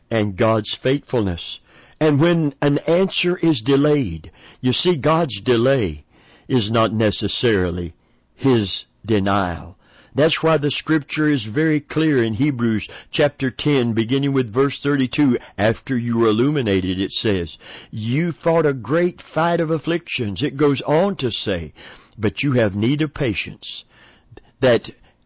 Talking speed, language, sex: 140 wpm, English, male